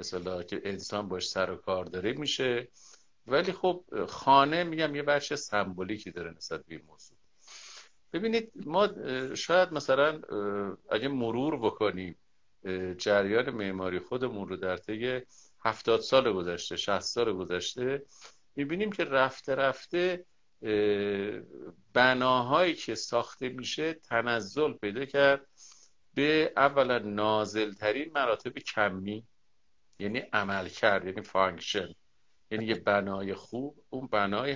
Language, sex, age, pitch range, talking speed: Persian, male, 50-69, 100-145 Hz, 115 wpm